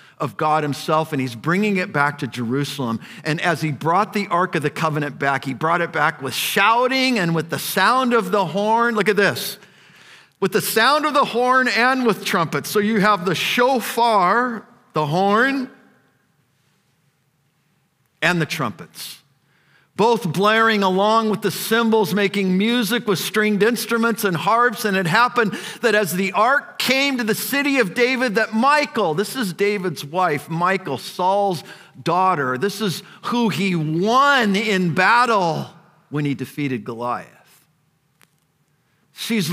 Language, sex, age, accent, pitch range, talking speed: English, male, 50-69, American, 160-225 Hz, 155 wpm